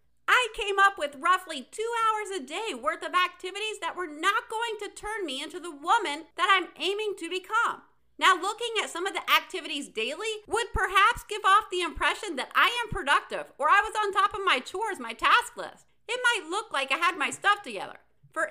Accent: American